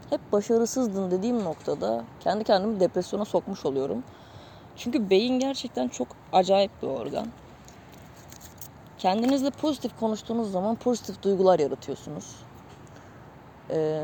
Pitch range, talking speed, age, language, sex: 160-220 Hz, 105 wpm, 20-39, Turkish, female